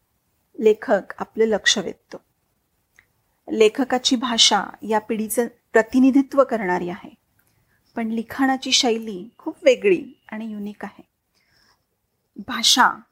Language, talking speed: Marathi, 90 wpm